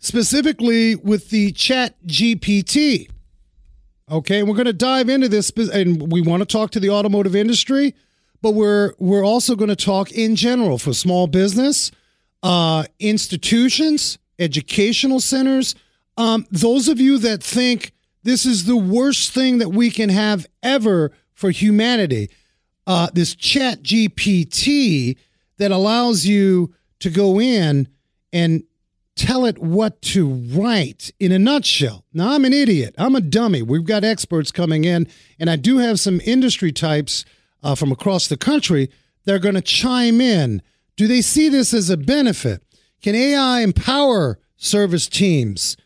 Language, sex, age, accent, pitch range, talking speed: English, male, 40-59, American, 160-230 Hz, 150 wpm